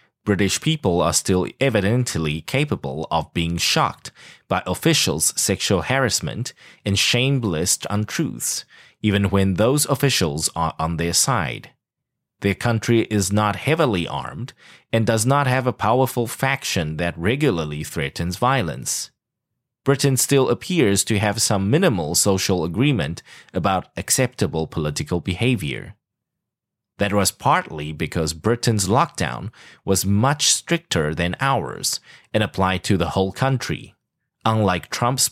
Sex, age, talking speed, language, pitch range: male, 30-49, 125 wpm, English, 90-130 Hz